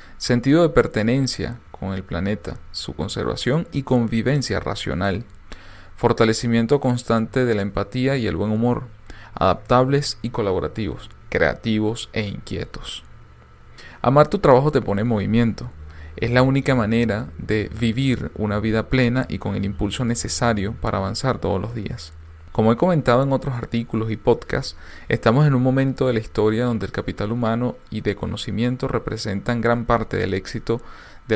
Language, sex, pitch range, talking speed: Spanish, male, 100-125 Hz, 155 wpm